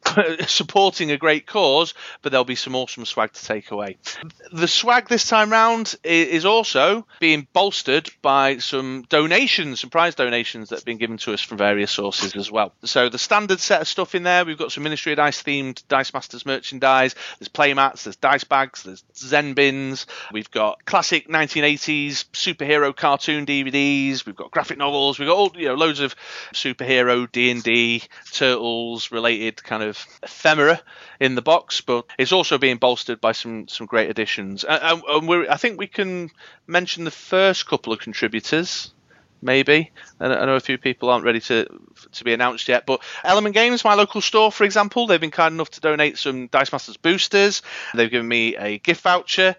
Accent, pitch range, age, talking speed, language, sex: British, 125-170 Hz, 30-49, 180 wpm, English, male